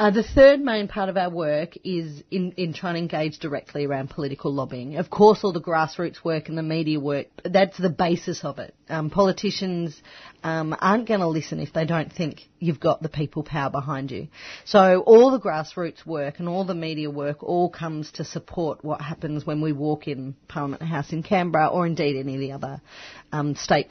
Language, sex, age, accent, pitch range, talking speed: English, female, 40-59, Australian, 155-195 Hz, 210 wpm